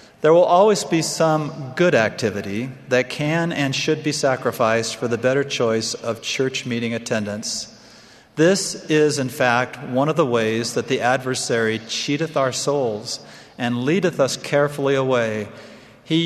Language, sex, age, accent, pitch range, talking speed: English, male, 40-59, American, 115-150 Hz, 150 wpm